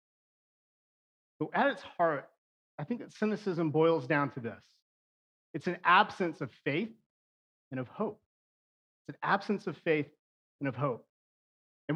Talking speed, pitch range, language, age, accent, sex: 145 wpm, 135-190 Hz, English, 30-49, American, male